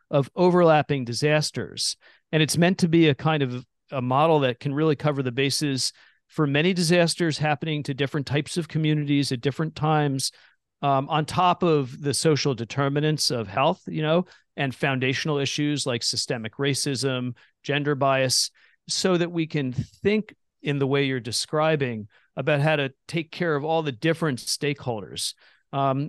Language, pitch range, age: English, 125-155 Hz, 40-59